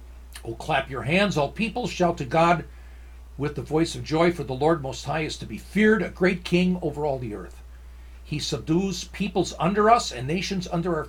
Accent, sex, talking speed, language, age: American, male, 210 wpm, English, 60-79